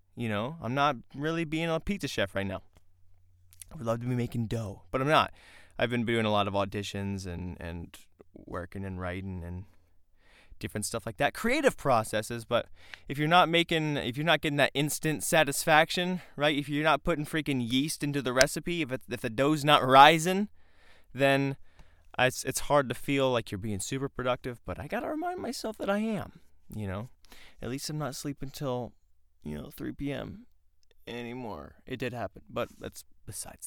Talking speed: 195 wpm